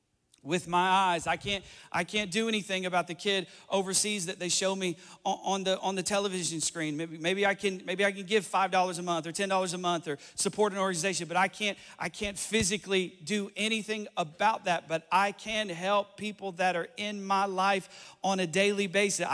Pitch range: 160-195 Hz